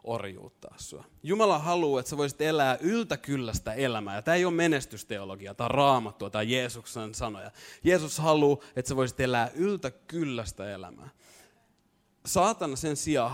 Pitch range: 115-155 Hz